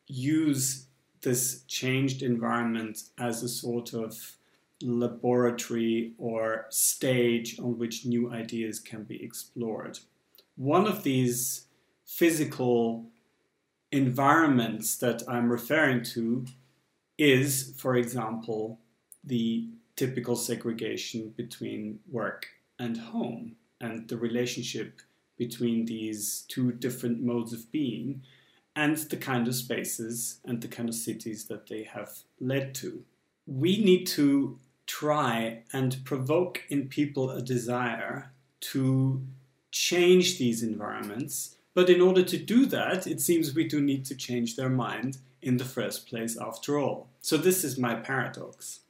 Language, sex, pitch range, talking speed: English, male, 115-140 Hz, 125 wpm